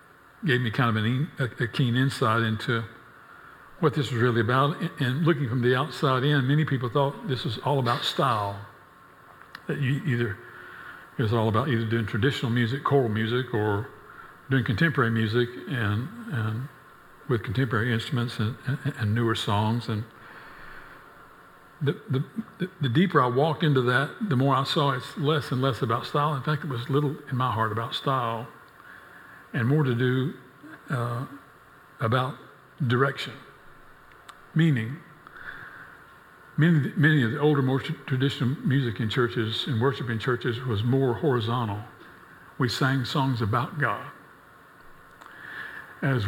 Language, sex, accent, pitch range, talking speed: English, male, American, 120-145 Hz, 150 wpm